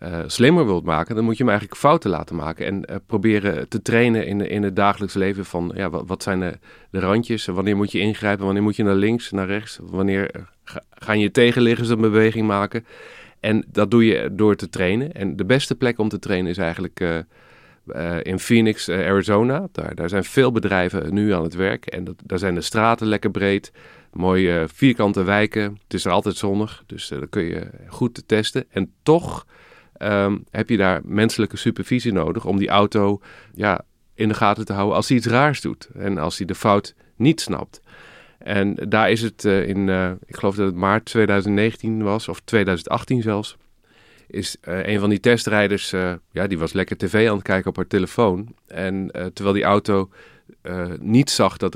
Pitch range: 95-110 Hz